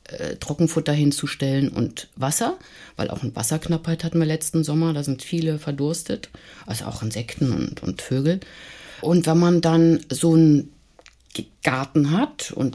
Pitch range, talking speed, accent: 120-160 Hz, 145 wpm, German